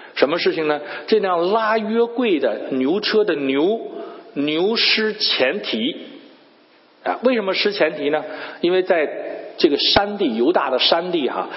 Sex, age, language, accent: male, 50-69, Japanese, Chinese